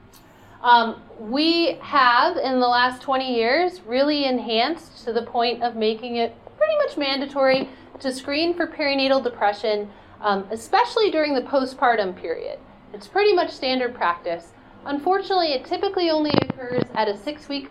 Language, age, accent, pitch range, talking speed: English, 30-49, American, 220-285 Hz, 145 wpm